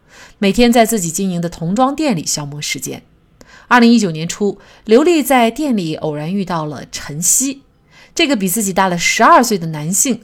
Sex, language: female, Chinese